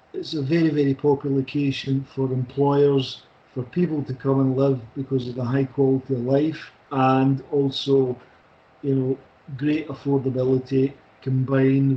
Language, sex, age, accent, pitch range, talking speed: Swedish, male, 50-69, British, 130-145 Hz, 140 wpm